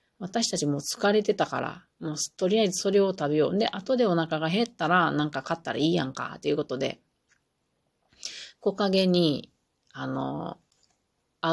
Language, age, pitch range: Japanese, 40-59, 150-190 Hz